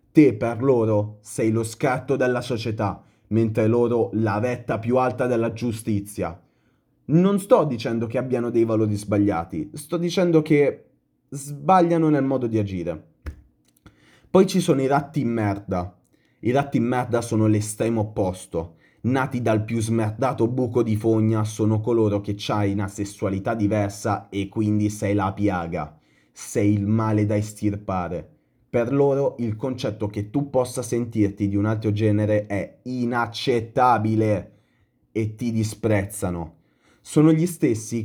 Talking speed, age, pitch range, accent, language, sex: 140 wpm, 30-49, 105-125 Hz, native, Italian, male